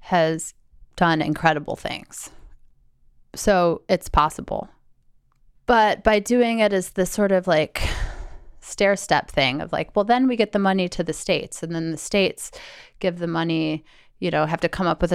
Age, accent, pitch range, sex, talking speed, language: 30-49, American, 155-180 Hz, female, 175 wpm, English